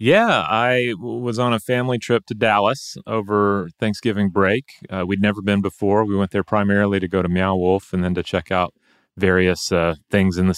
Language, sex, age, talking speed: English, male, 30-49, 210 wpm